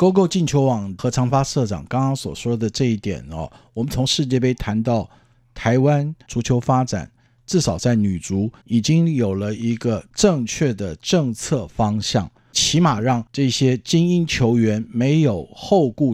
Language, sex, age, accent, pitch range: Chinese, male, 50-69, native, 115-150 Hz